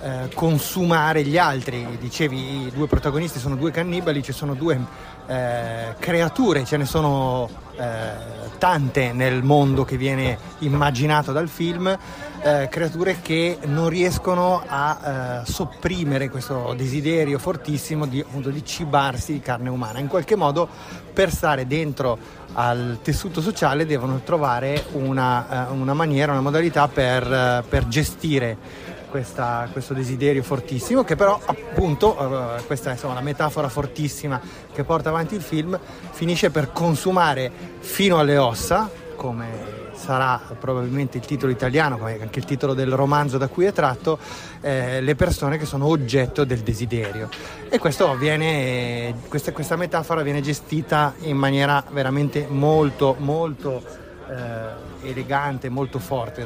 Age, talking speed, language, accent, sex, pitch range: 30-49, 135 wpm, Italian, native, male, 130-155 Hz